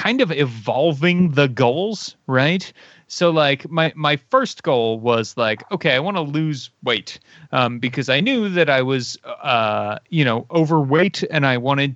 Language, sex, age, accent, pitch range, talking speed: English, male, 30-49, American, 120-160 Hz, 170 wpm